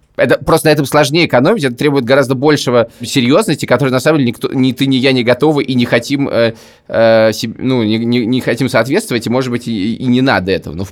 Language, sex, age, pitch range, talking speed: Russian, male, 20-39, 115-140 Hz, 240 wpm